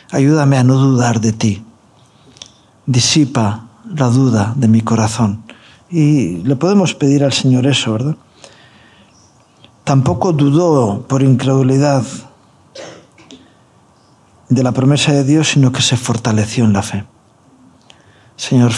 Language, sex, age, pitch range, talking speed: Spanish, male, 50-69, 125-175 Hz, 120 wpm